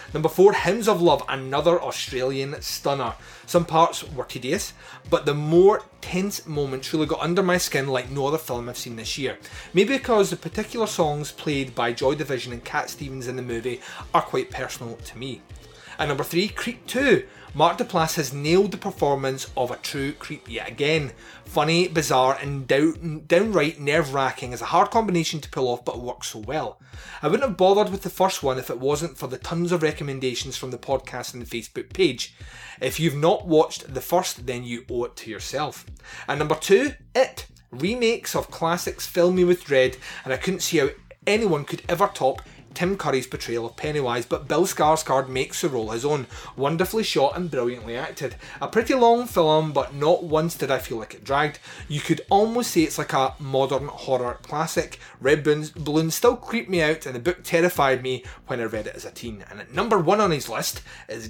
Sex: male